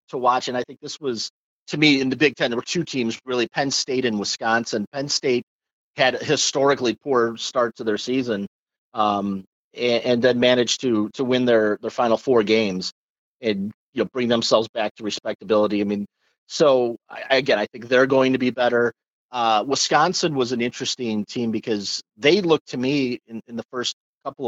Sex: male